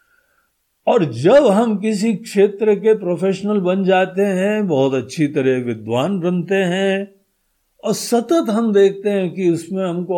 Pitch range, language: 125-200 Hz, Hindi